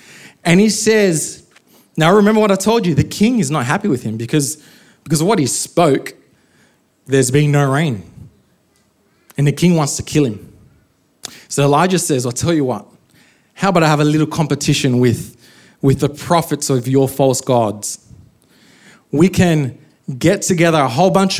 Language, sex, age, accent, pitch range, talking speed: English, male, 20-39, Australian, 140-190 Hz, 175 wpm